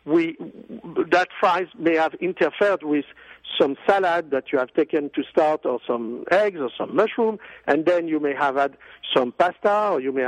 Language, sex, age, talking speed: English, male, 60-79, 185 wpm